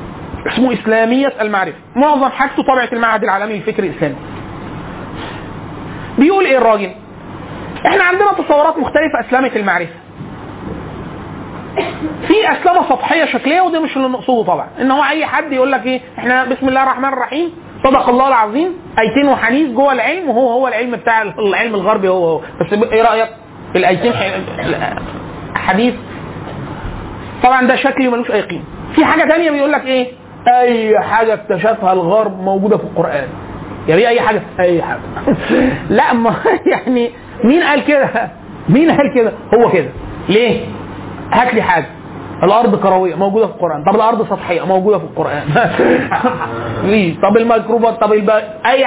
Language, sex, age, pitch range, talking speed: Arabic, male, 30-49, 210-270 Hz, 140 wpm